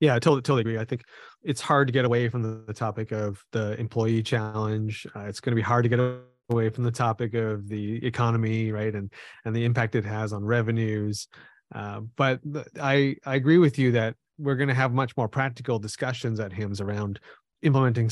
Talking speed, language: 210 wpm, English